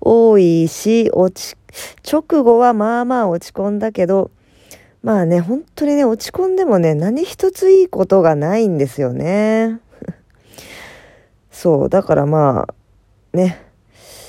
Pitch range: 140-205 Hz